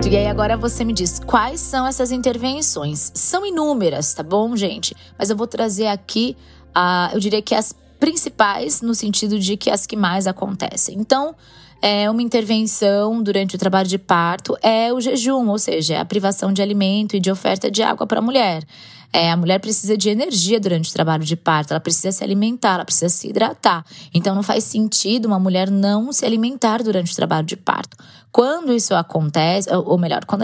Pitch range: 165-220 Hz